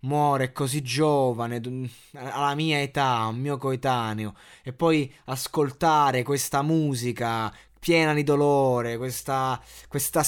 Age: 20-39